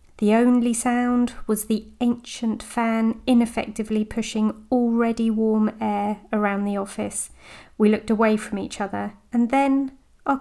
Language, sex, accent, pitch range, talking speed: English, female, British, 200-240 Hz, 140 wpm